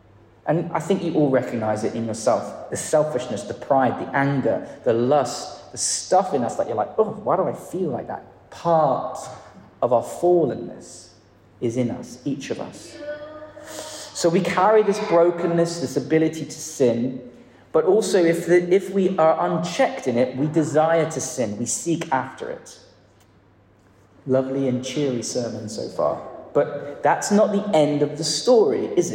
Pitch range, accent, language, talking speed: 115-165 Hz, British, English, 170 wpm